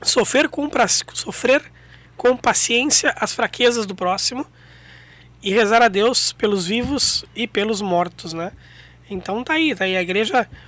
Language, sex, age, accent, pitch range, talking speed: Portuguese, male, 20-39, Brazilian, 180-225 Hz, 145 wpm